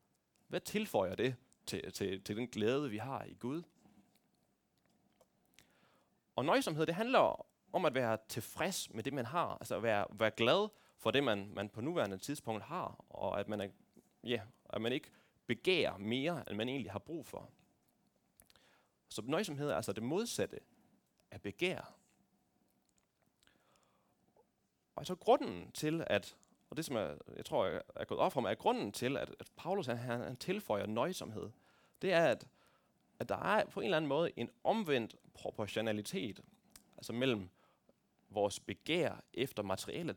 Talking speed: 165 wpm